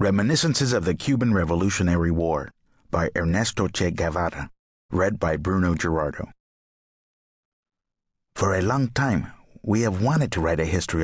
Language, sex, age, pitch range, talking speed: English, male, 50-69, 85-110 Hz, 135 wpm